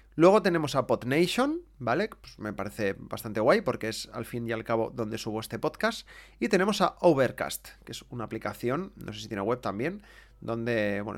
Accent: Spanish